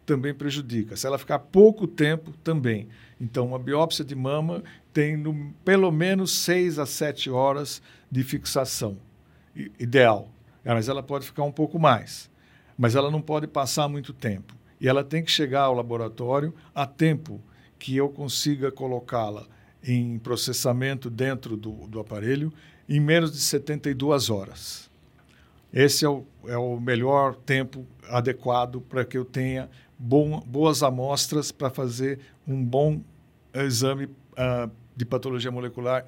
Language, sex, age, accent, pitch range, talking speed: Portuguese, male, 60-79, Brazilian, 120-145 Hz, 140 wpm